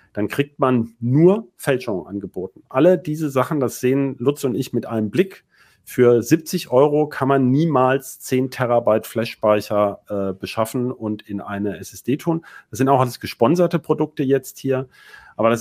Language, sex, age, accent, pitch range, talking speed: German, male, 40-59, German, 115-145 Hz, 165 wpm